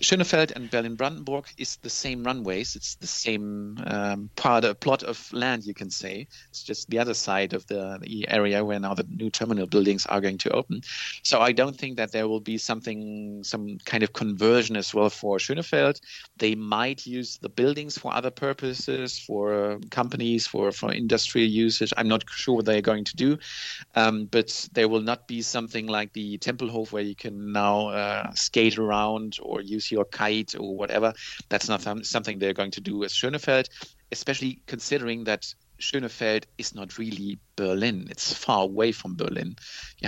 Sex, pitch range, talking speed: male, 105-120 Hz, 185 wpm